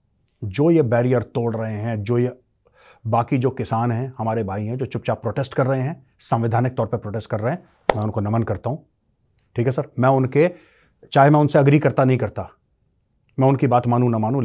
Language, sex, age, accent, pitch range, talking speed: Hindi, male, 30-49, native, 105-125 Hz, 210 wpm